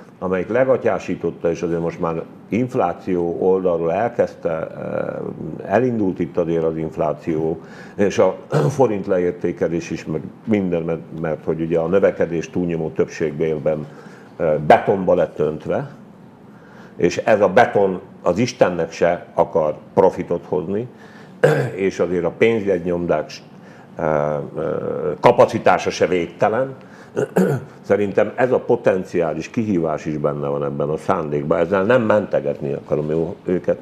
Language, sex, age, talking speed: Hungarian, male, 50-69, 110 wpm